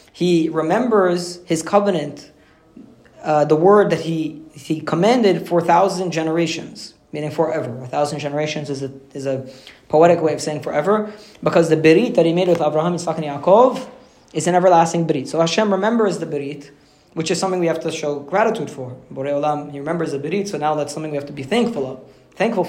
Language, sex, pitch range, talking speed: English, male, 150-185 Hz, 195 wpm